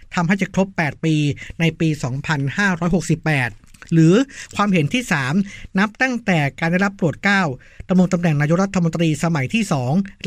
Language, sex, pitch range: Thai, male, 150-185 Hz